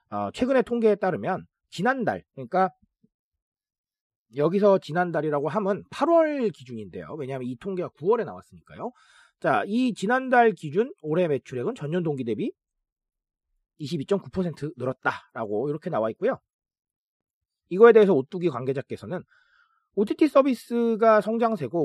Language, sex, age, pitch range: Korean, male, 40-59, 155-255 Hz